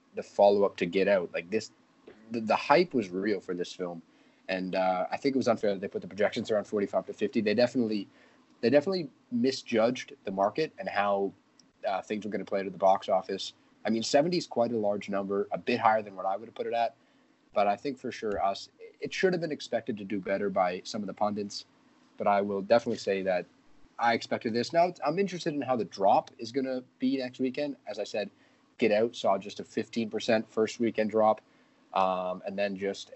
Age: 30-49